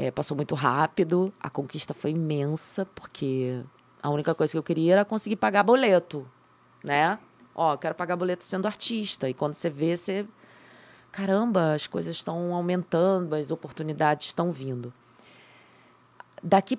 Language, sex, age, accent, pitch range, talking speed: English, female, 20-39, Brazilian, 135-175 Hz, 145 wpm